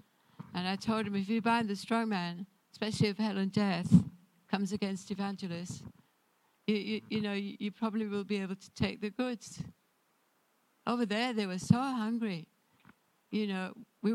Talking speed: 175 wpm